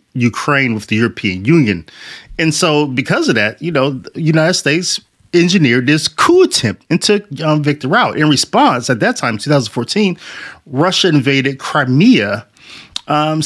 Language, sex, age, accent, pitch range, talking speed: English, male, 30-49, American, 145-210 Hz, 150 wpm